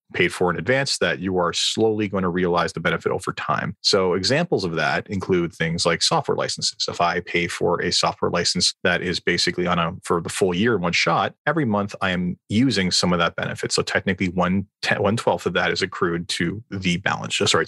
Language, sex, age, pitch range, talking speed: English, male, 30-49, 85-105 Hz, 220 wpm